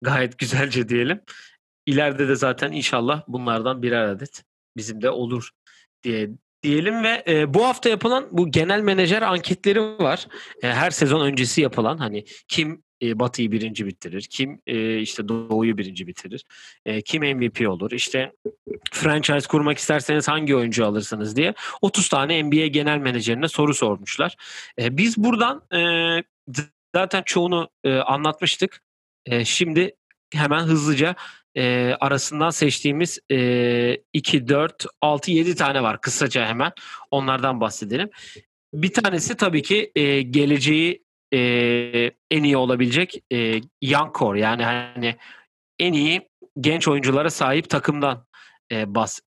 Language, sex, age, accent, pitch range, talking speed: Turkish, male, 40-59, native, 120-165 Hz, 130 wpm